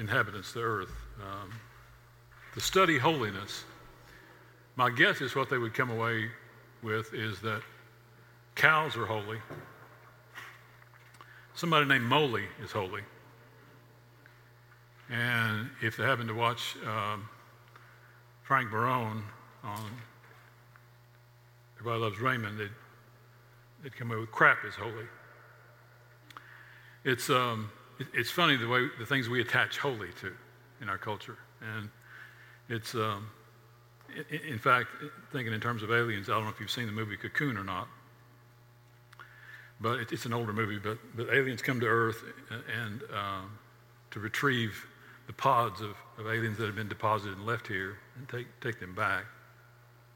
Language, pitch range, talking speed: English, 110-120 Hz, 140 wpm